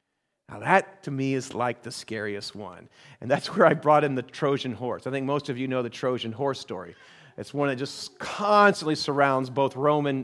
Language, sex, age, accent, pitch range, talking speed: English, male, 40-59, American, 130-175 Hz, 210 wpm